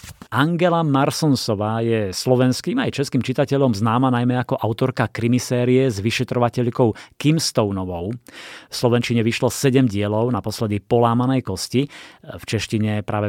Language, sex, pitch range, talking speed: Slovak, male, 110-130 Hz, 120 wpm